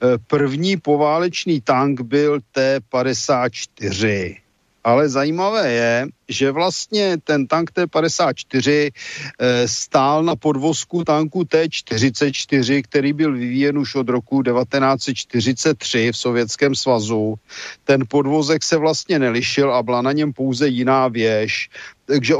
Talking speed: 110 wpm